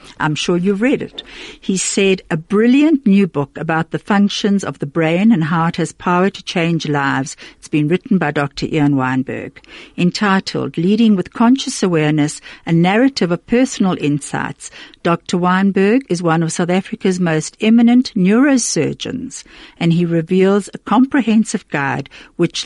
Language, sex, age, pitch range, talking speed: English, female, 60-79, 160-215 Hz, 155 wpm